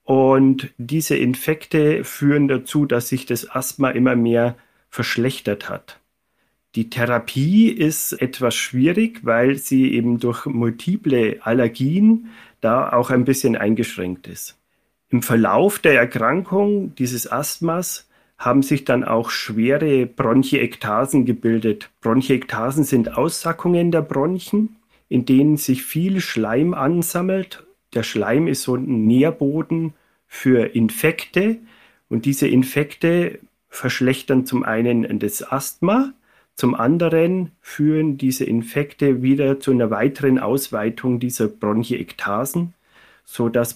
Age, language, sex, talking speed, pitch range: 40-59, German, male, 115 wpm, 120-155 Hz